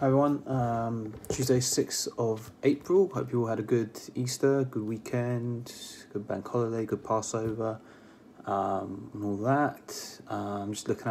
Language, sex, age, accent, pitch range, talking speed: English, male, 20-39, British, 100-120 Hz, 145 wpm